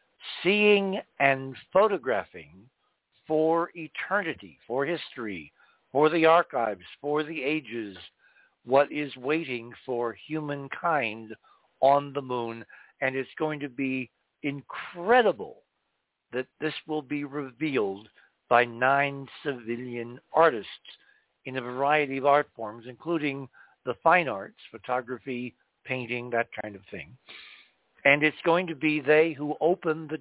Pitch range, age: 125-155 Hz, 60-79